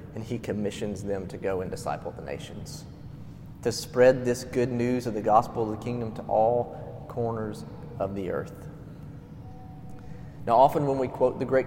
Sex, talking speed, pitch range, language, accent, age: male, 175 wpm, 105-135 Hz, English, American, 30-49